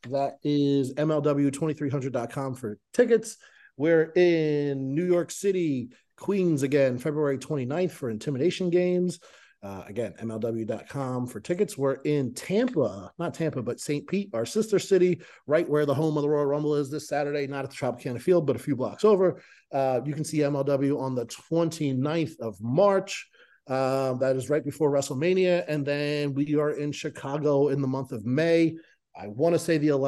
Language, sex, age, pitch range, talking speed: English, male, 30-49, 130-165 Hz, 170 wpm